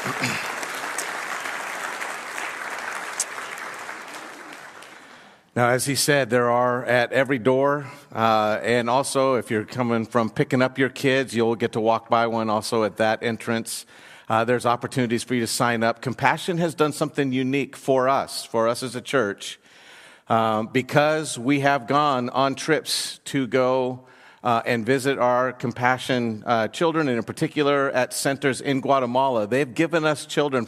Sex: male